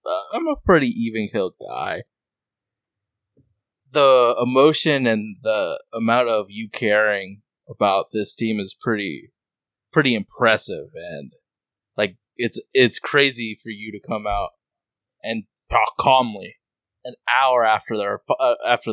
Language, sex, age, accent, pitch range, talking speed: English, male, 20-39, American, 105-145 Hz, 130 wpm